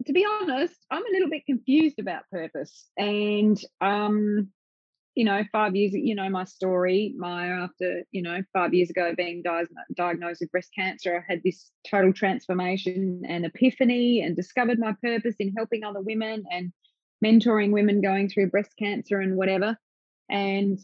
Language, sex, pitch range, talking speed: English, female, 180-230 Hz, 165 wpm